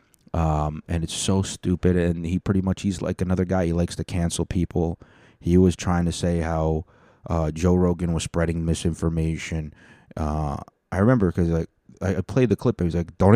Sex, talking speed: male, 195 wpm